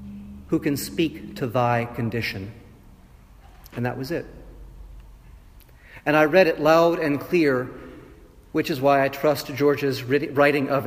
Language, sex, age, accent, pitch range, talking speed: English, male, 40-59, American, 115-145 Hz, 140 wpm